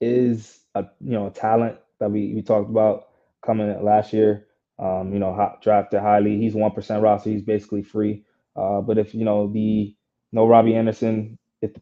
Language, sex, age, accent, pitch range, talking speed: English, male, 20-39, American, 100-110 Hz, 190 wpm